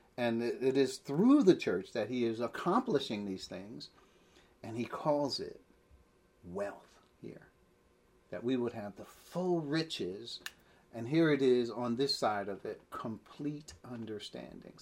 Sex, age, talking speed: male, 40-59, 145 wpm